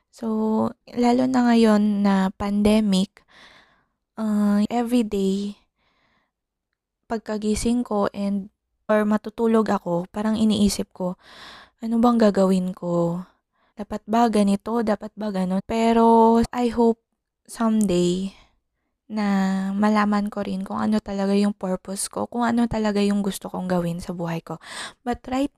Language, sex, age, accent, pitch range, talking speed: Filipino, female, 20-39, native, 195-235 Hz, 125 wpm